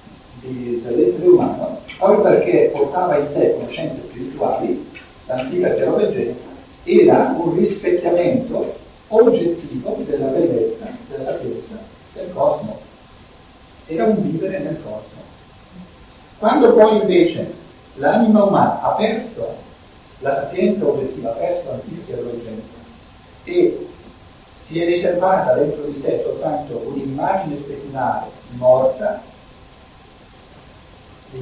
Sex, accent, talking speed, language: male, native, 100 wpm, Italian